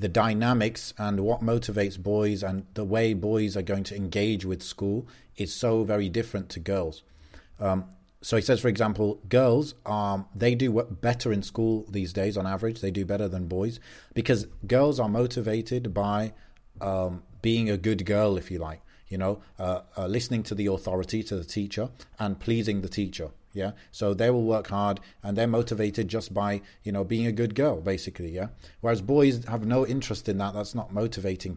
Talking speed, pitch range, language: 195 wpm, 100-115 Hz, English